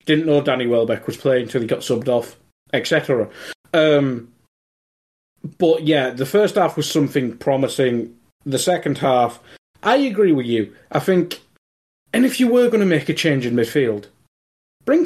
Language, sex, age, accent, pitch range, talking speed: English, male, 30-49, British, 115-160 Hz, 165 wpm